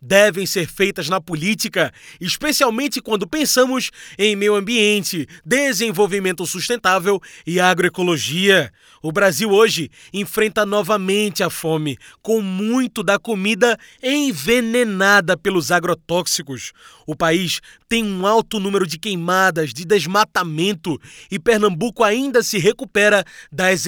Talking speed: 115 wpm